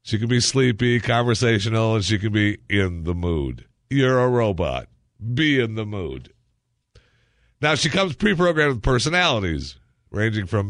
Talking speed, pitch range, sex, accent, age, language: 150 wpm, 85-120 Hz, male, American, 50-69, English